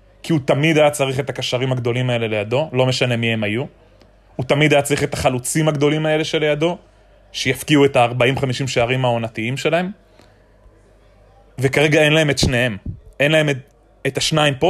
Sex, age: male, 20-39